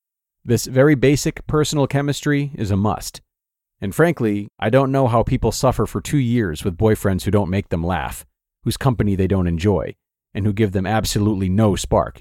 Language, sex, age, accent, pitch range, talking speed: English, male, 40-59, American, 100-135 Hz, 185 wpm